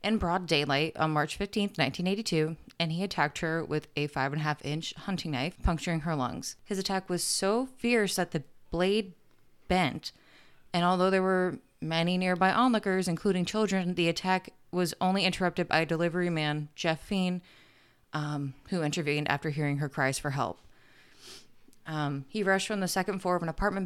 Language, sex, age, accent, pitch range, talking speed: English, female, 20-39, American, 150-180 Hz, 180 wpm